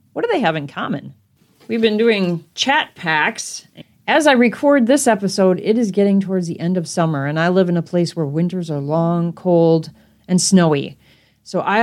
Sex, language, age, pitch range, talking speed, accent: female, English, 40-59, 170-230 Hz, 200 wpm, American